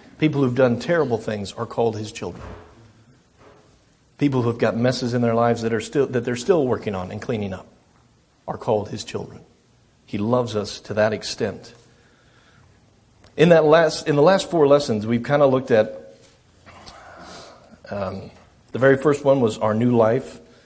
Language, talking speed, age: English, 170 wpm, 40-59